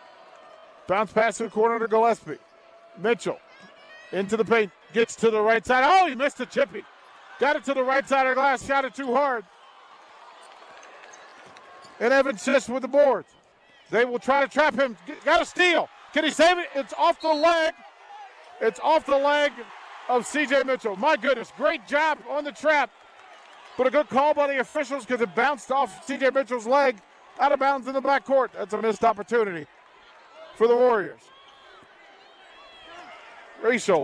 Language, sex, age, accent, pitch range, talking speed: English, male, 50-69, American, 235-315 Hz, 175 wpm